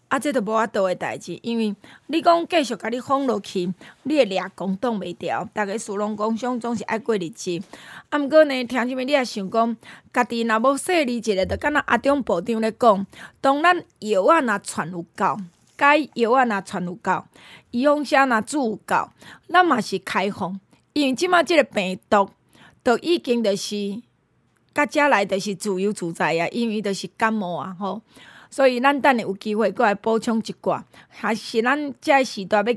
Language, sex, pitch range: Chinese, female, 200-260 Hz